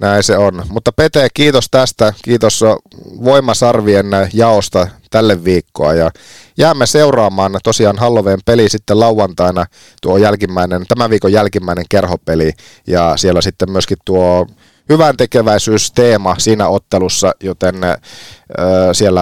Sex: male